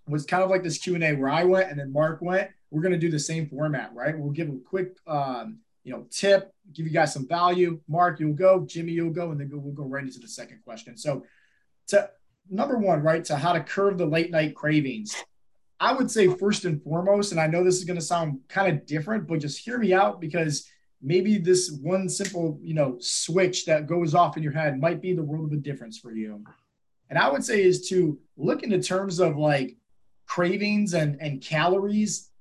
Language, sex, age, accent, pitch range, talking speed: English, male, 20-39, American, 150-185 Hz, 230 wpm